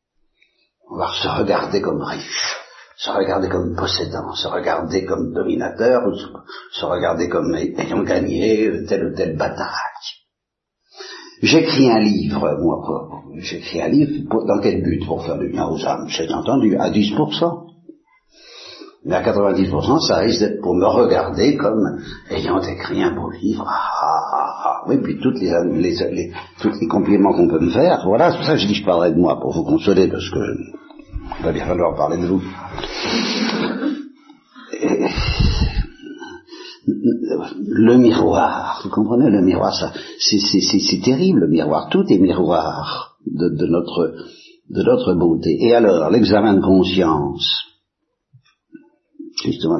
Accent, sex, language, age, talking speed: French, male, Italian, 60-79, 155 wpm